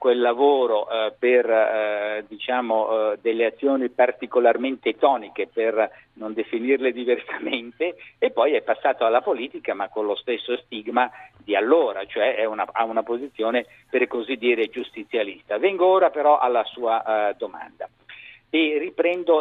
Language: Italian